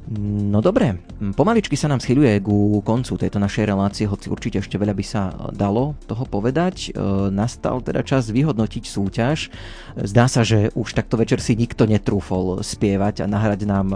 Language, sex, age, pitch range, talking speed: Slovak, male, 30-49, 100-115 Hz, 170 wpm